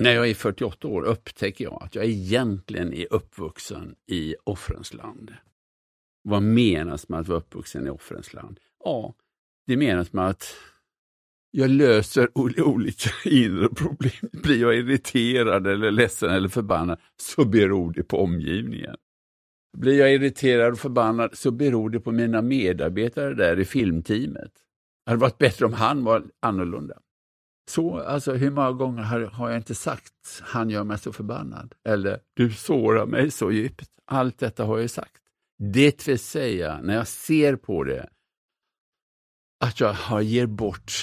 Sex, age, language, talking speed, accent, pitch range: male, 60-79, English, 150 wpm, Norwegian, 90-125 Hz